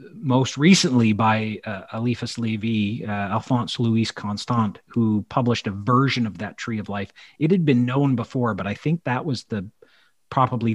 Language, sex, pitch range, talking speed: English, male, 100-120 Hz, 175 wpm